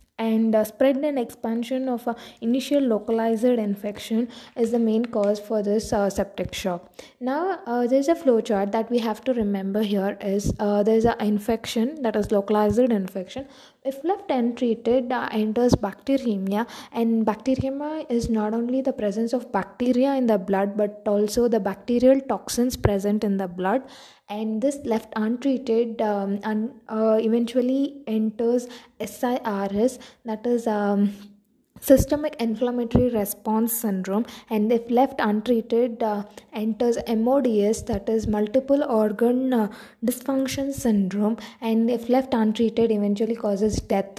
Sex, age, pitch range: female, 20-39, 210-250 Hz